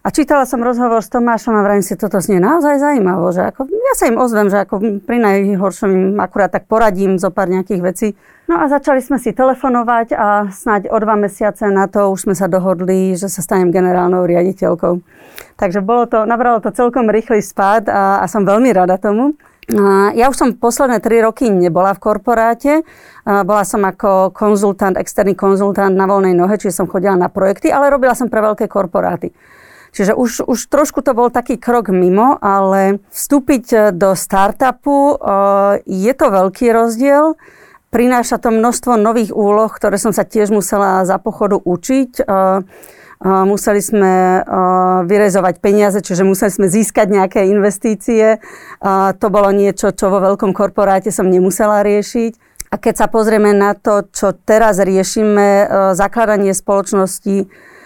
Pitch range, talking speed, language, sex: 195-235 Hz, 165 wpm, Slovak, female